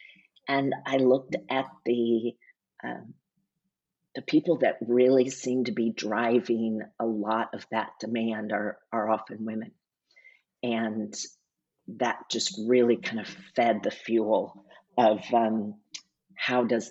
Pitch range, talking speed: 110-125 Hz, 130 wpm